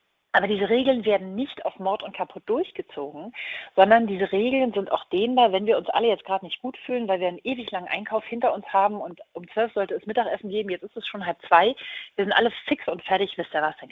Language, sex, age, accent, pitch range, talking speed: German, female, 40-59, German, 185-250 Hz, 245 wpm